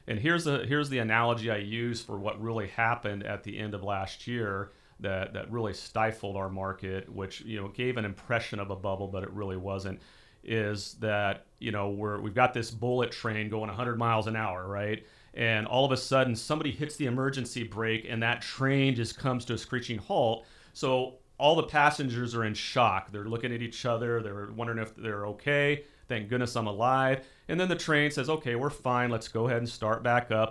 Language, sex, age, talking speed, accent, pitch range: English, male, 40-59, 210 wpm, American, 110-125 Hz